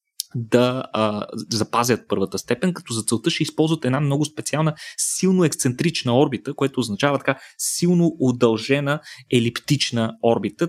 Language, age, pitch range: Bulgarian, 20-39, 120-160 Hz